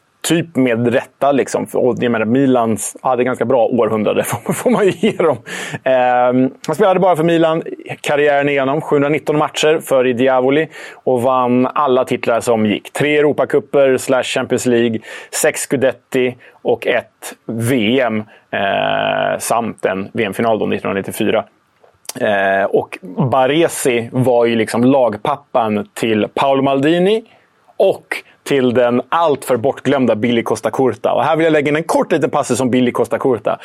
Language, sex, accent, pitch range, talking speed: Swedish, male, Norwegian, 120-150 Hz, 145 wpm